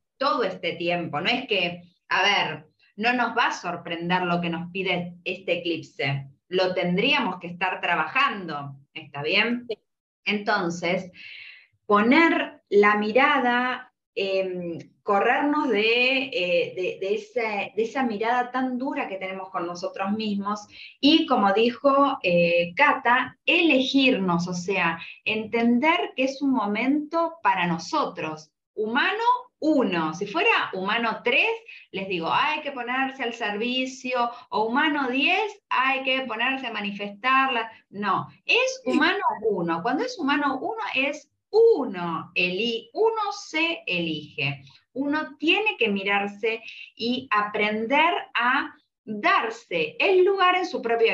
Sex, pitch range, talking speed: female, 185-285 Hz, 125 wpm